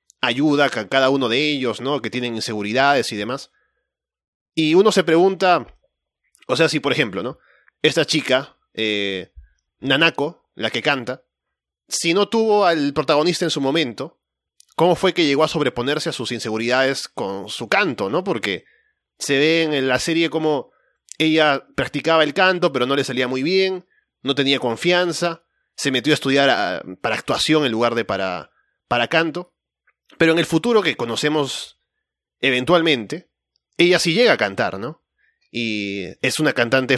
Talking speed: 160 wpm